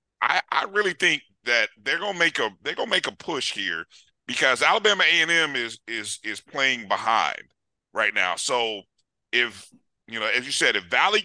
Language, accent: English, American